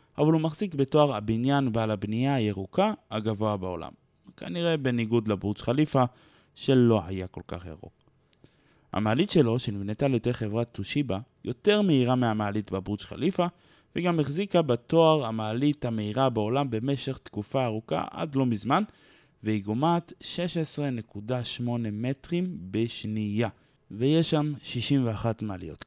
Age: 20-39